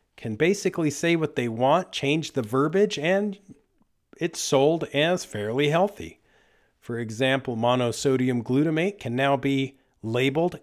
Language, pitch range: English, 120-155 Hz